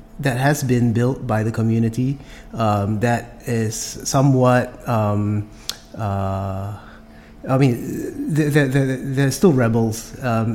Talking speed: 110 wpm